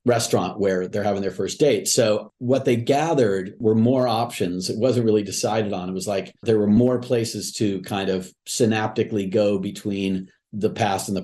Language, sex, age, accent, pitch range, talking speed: English, male, 40-59, American, 95-115 Hz, 190 wpm